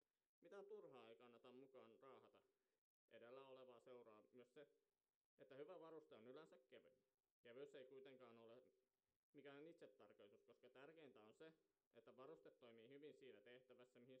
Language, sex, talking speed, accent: Finnish, male, 150 wpm, native